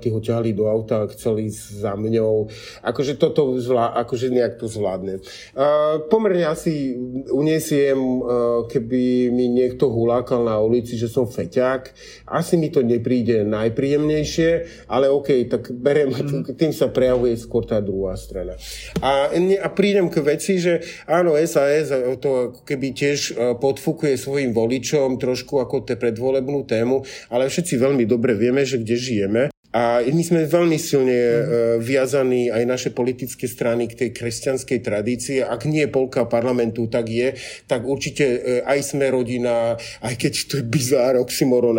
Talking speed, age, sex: 145 wpm, 40-59, male